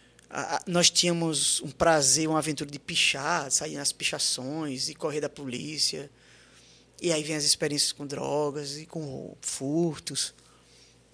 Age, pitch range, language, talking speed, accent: 20-39, 140-180 Hz, Portuguese, 135 wpm, Brazilian